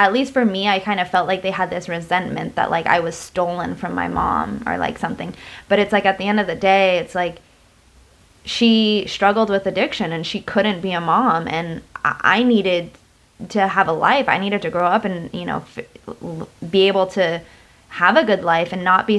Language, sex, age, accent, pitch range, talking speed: English, female, 20-39, American, 175-205 Hz, 220 wpm